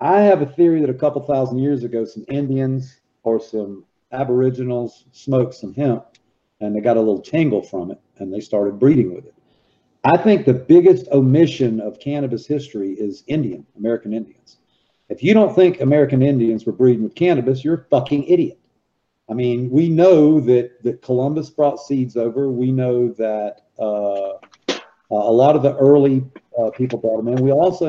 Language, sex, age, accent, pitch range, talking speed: English, male, 50-69, American, 115-150 Hz, 180 wpm